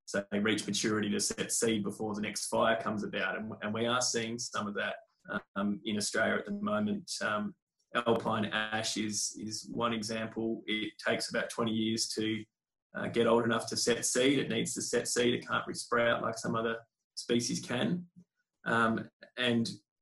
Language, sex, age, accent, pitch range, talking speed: English, male, 20-39, Australian, 110-120 Hz, 185 wpm